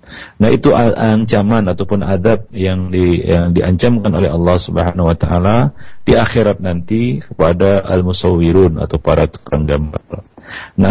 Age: 40-59